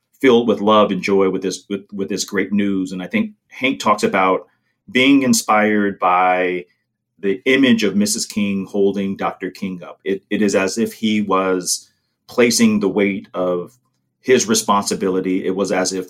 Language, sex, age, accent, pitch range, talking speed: English, male, 30-49, American, 95-115 Hz, 175 wpm